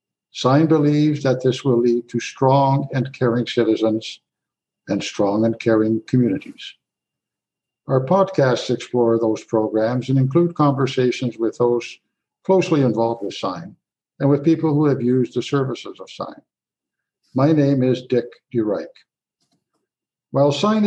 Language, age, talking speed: English, 60-79, 135 wpm